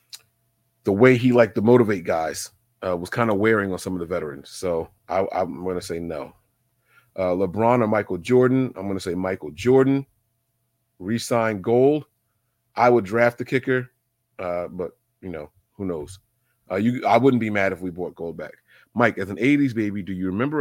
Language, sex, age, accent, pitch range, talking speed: English, male, 30-49, American, 100-125 Hz, 190 wpm